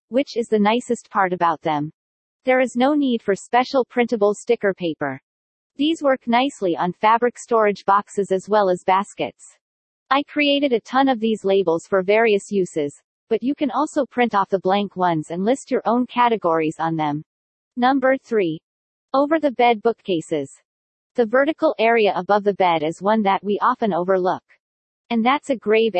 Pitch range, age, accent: 190-255 Hz, 40-59, American